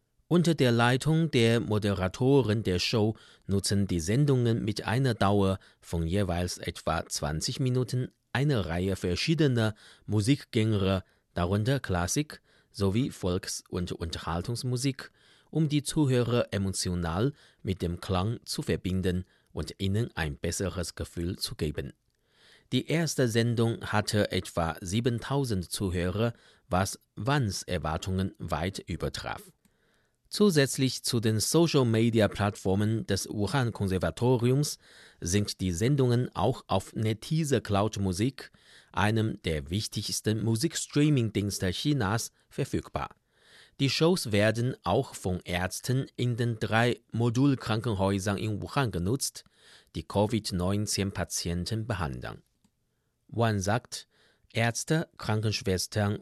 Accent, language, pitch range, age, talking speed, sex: German, German, 95-125 Hz, 30-49, 100 wpm, male